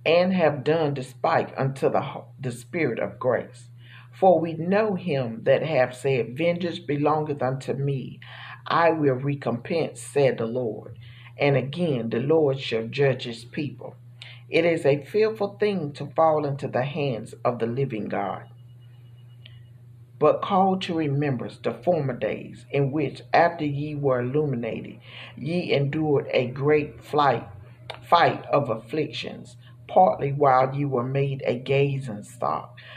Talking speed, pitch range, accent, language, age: 140 wpm, 120-150 Hz, American, English, 50-69